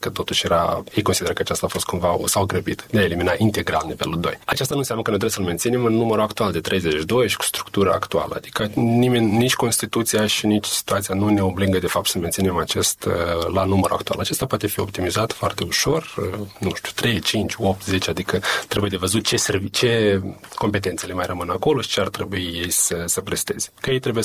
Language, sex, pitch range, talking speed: Romanian, male, 95-115 Hz, 215 wpm